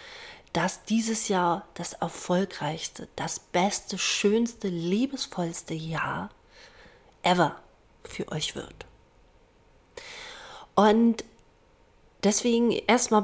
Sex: female